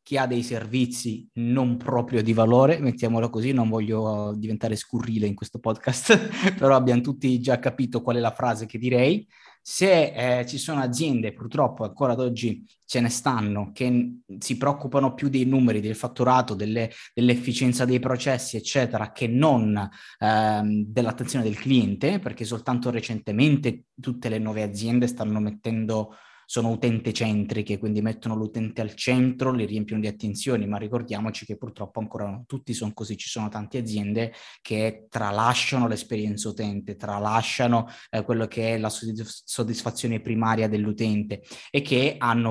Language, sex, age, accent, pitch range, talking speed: Italian, male, 20-39, native, 110-125 Hz, 150 wpm